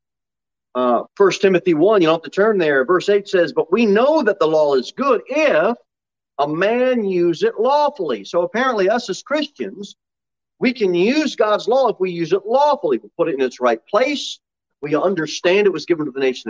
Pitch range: 150-245 Hz